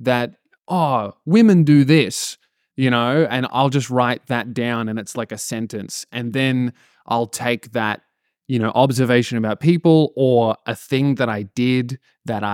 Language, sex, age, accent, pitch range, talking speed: English, male, 20-39, Australian, 110-130 Hz, 165 wpm